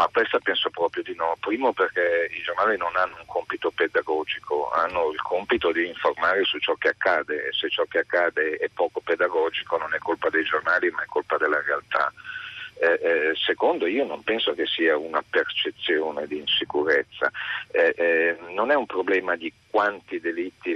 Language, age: Italian, 50-69